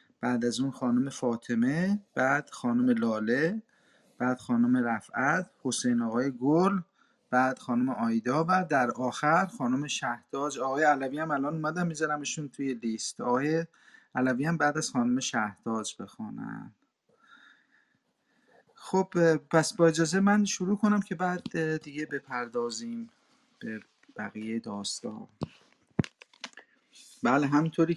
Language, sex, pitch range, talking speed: Persian, male, 125-170 Hz, 115 wpm